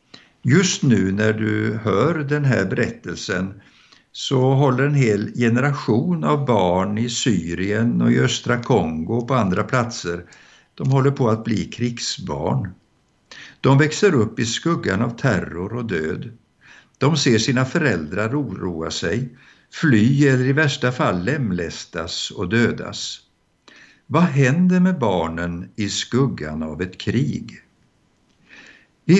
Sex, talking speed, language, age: male, 130 wpm, Swedish, 60-79